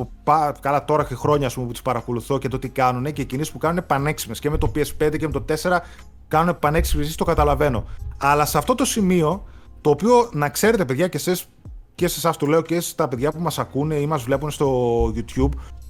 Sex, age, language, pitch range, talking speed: male, 30-49, Greek, 145-185 Hz, 210 wpm